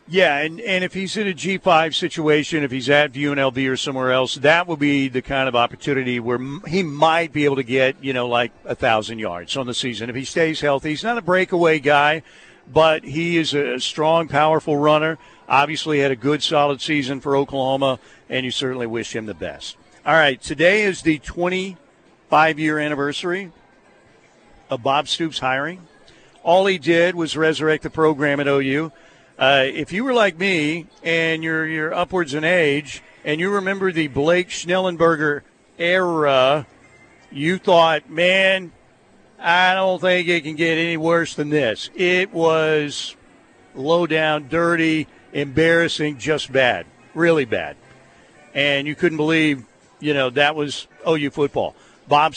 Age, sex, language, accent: 50-69, male, English, American